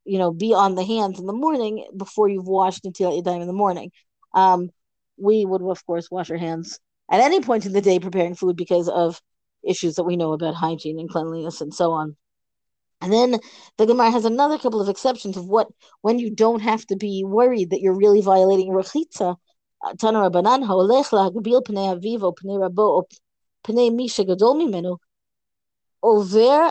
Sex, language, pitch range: female, English, 185-235 Hz